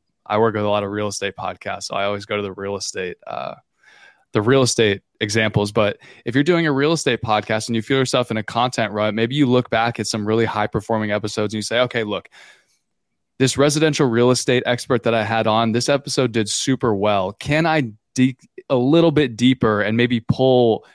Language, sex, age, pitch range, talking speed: English, male, 20-39, 105-125 Hz, 210 wpm